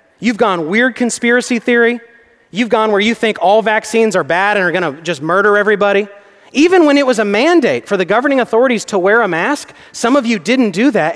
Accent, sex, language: American, male, English